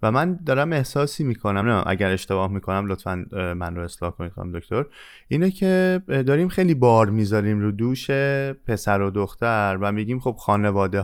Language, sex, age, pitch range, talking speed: Persian, male, 20-39, 100-130 Hz, 170 wpm